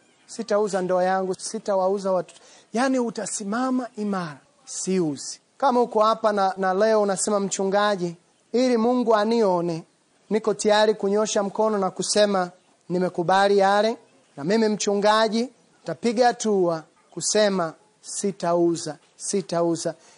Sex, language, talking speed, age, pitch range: male, Swahili, 105 wpm, 30-49, 185-225 Hz